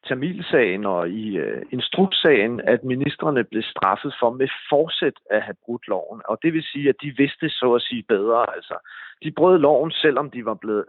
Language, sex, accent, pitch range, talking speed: Danish, male, native, 110-155 Hz, 195 wpm